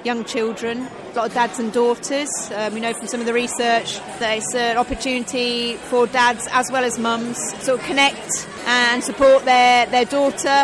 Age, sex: 30-49, female